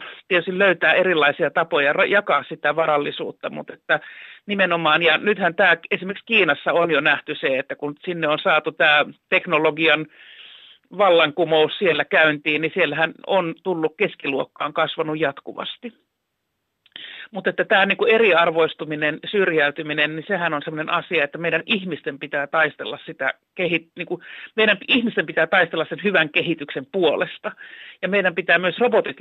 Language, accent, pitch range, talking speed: Finnish, native, 150-185 Hz, 130 wpm